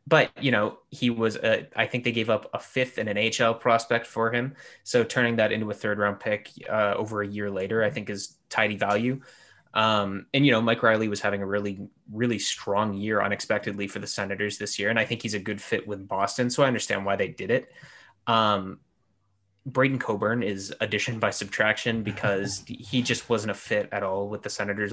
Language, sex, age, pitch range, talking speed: English, male, 20-39, 100-120 Hz, 215 wpm